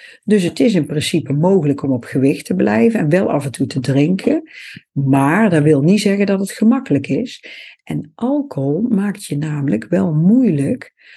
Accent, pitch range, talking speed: Dutch, 145-220 Hz, 185 wpm